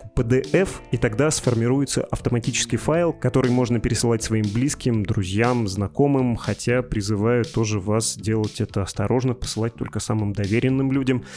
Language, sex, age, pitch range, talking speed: Russian, male, 20-39, 110-130 Hz, 130 wpm